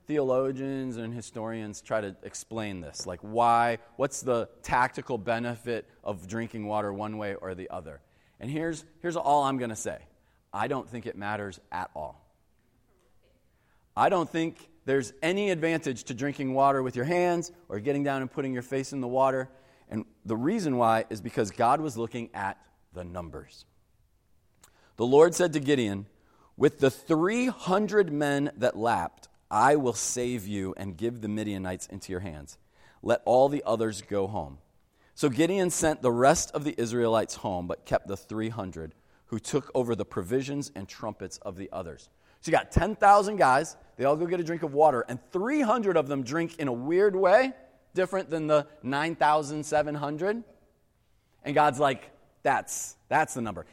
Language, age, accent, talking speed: English, 30-49, American, 170 wpm